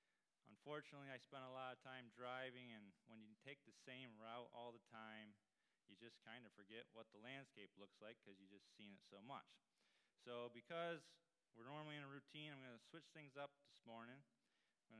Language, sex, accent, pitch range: English, male, American, 115-140 Hz